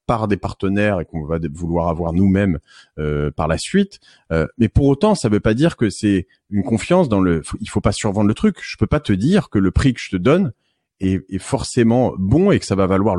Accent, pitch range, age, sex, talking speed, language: French, 90-125 Hz, 30-49, male, 265 wpm, French